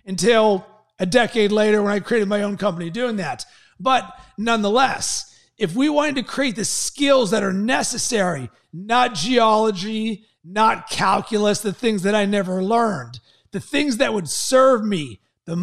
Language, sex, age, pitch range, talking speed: English, male, 30-49, 205-235 Hz, 155 wpm